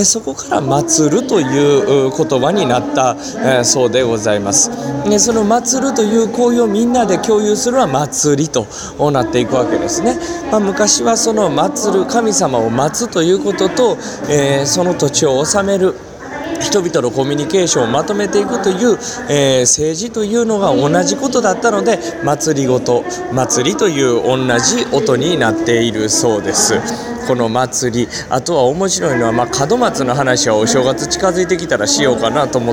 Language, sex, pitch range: Japanese, male, 130-220 Hz